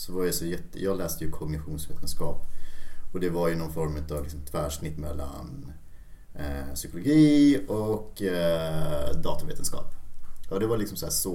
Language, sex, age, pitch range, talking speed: Swedish, male, 30-49, 80-100 Hz, 165 wpm